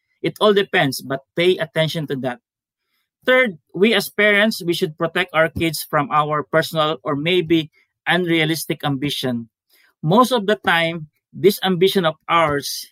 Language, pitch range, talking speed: English, 155-200 Hz, 150 wpm